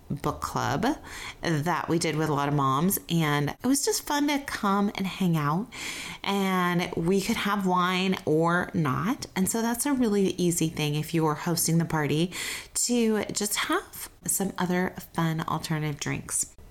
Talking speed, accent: 170 wpm, American